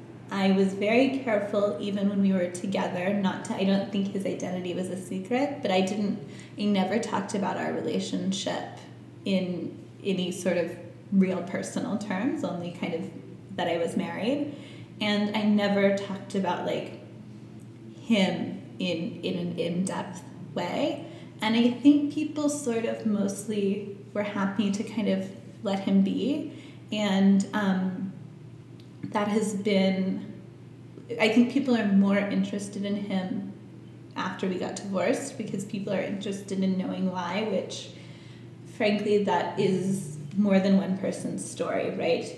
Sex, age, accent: female, 20-39, American